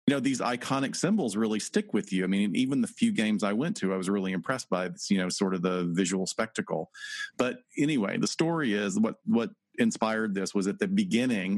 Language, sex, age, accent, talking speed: English, male, 40-59, American, 230 wpm